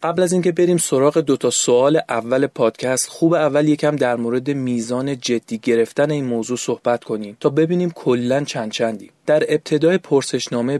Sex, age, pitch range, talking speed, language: male, 30-49, 120-150 Hz, 165 wpm, Persian